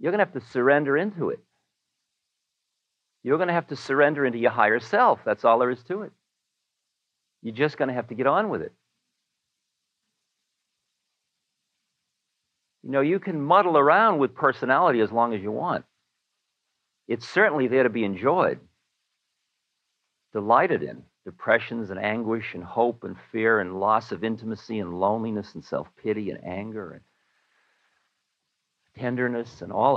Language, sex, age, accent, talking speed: English, male, 50-69, American, 150 wpm